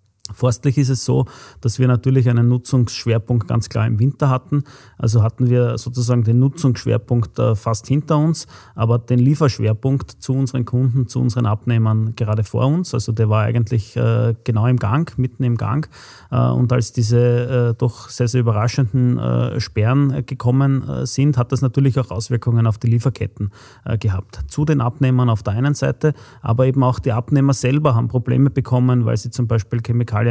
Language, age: German, 30-49